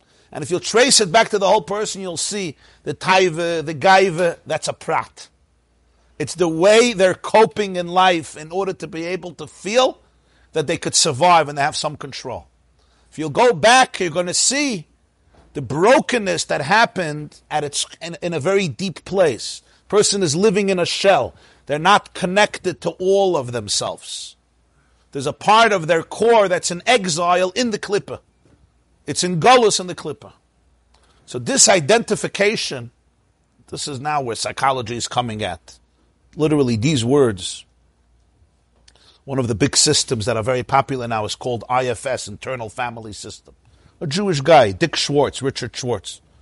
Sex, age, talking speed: male, 50-69, 170 wpm